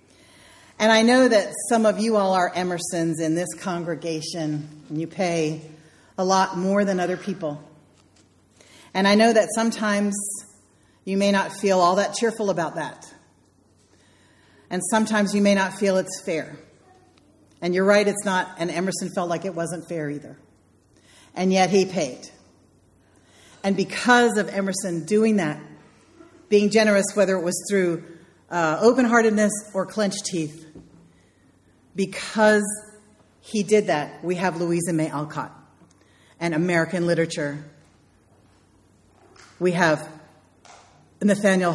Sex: female